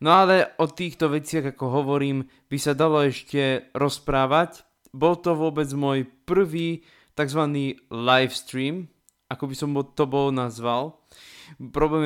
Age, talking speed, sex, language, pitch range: 20-39, 130 wpm, male, Slovak, 125-155 Hz